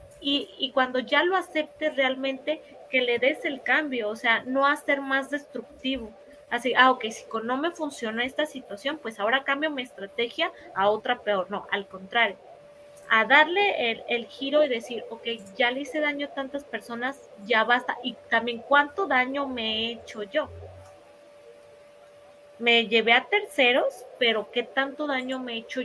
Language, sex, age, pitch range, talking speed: Spanish, female, 30-49, 220-275 Hz, 175 wpm